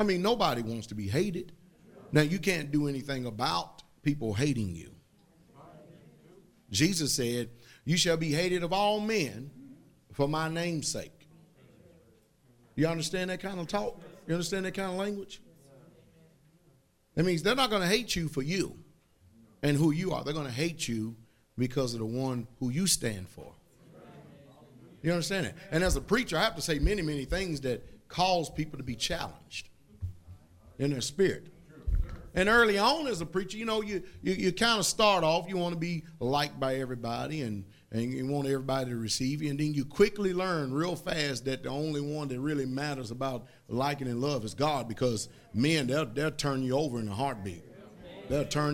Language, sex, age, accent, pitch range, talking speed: English, male, 40-59, American, 125-175 Hz, 190 wpm